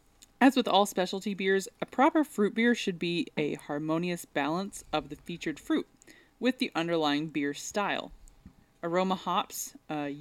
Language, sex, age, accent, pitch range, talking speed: English, female, 20-39, American, 160-210 Hz, 155 wpm